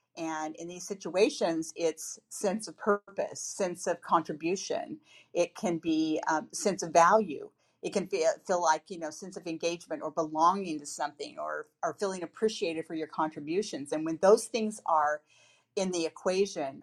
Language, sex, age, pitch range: English, female, 50-69, 155-195 Hz